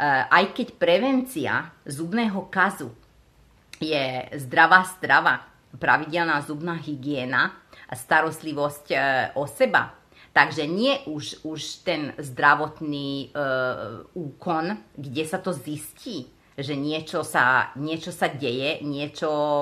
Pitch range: 135-165 Hz